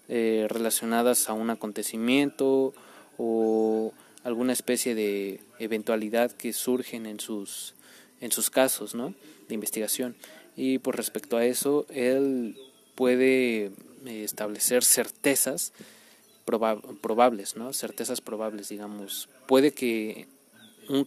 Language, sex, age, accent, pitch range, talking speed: Spanish, male, 20-39, Mexican, 110-130 Hz, 110 wpm